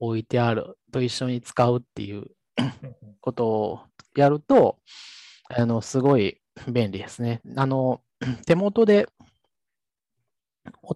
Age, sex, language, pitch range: 20-39, male, Japanese, 120-175 Hz